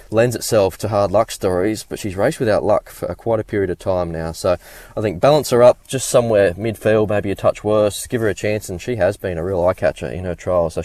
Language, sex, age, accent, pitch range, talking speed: English, male, 20-39, Australian, 90-110 Hz, 260 wpm